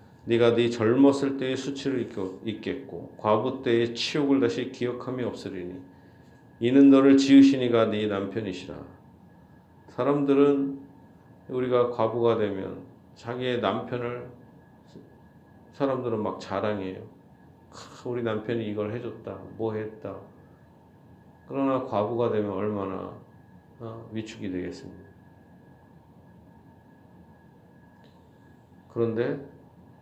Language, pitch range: Korean, 100-120 Hz